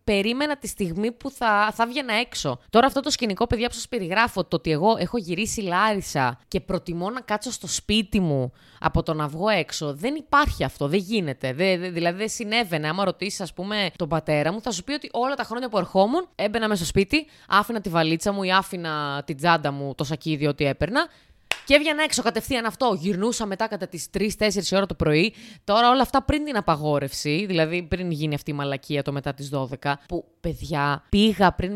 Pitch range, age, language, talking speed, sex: 160-225 Hz, 20-39, Greek, 210 wpm, female